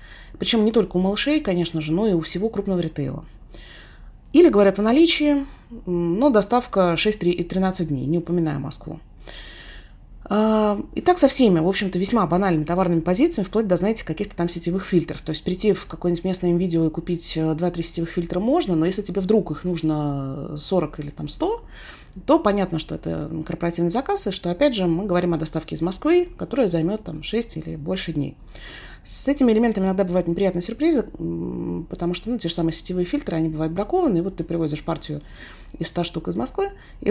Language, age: Russian, 30-49